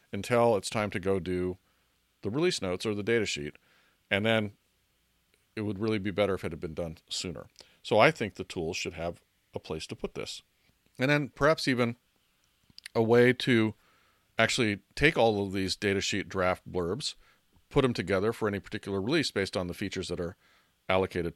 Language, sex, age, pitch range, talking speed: English, male, 40-59, 95-115 Hz, 190 wpm